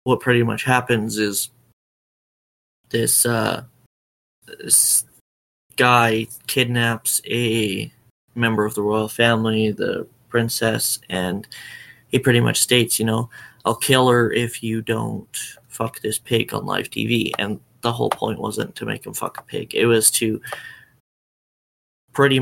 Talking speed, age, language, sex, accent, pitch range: 140 wpm, 20-39, English, male, American, 110-120 Hz